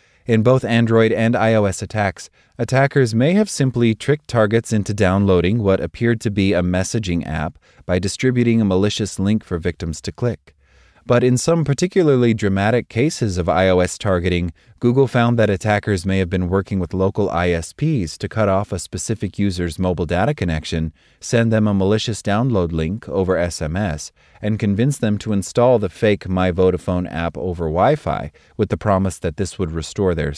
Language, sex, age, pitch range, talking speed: English, male, 20-39, 90-115 Hz, 170 wpm